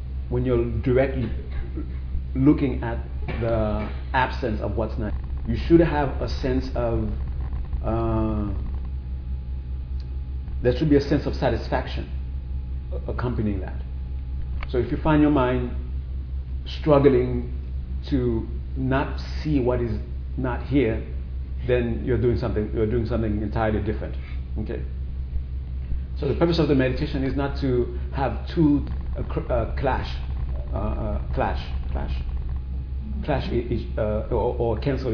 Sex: male